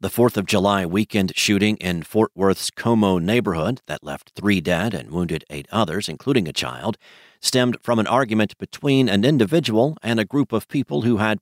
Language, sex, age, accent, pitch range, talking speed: English, male, 50-69, American, 95-115 Hz, 190 wpm